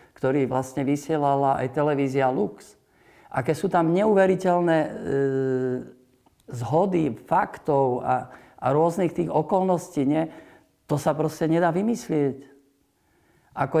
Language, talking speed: Slovak, 115 wpm